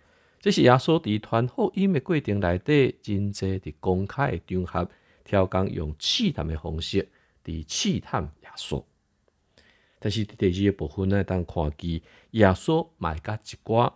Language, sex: Chinese, male